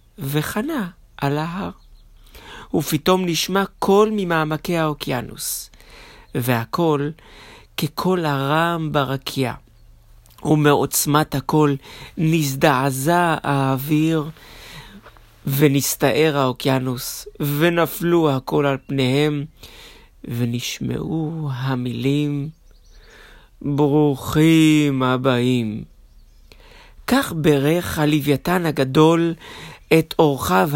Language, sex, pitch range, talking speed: Hebrew, male, 130-160 Hz, 60 wpm